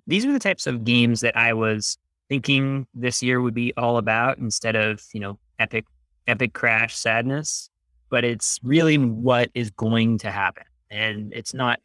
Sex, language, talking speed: male, English, 175 wpm